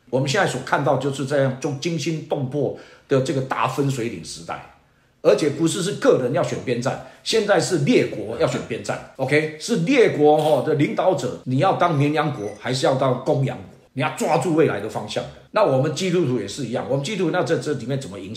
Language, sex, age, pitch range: Chinese, male, 50-69, 125-155 Hz